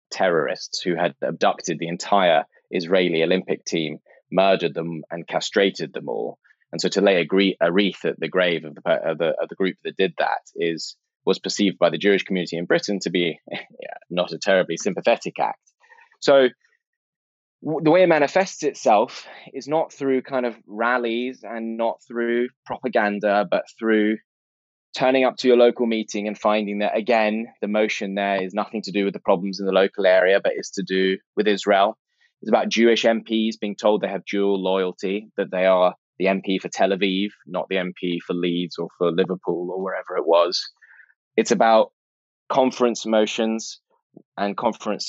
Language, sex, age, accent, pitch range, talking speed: English, male, 20-39, British, 95-115 Hz, 180 wpm